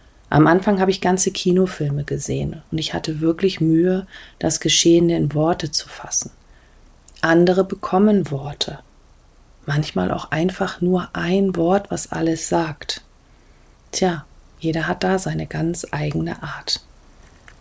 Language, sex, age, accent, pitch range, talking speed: German, female, 40-59, German, 150-180 Hz, 130 wpm